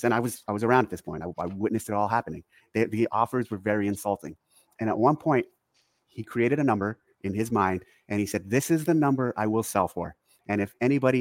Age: 30-49